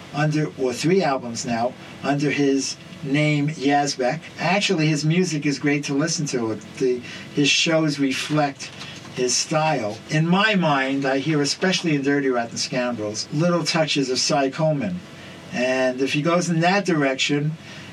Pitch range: 130-160 Hz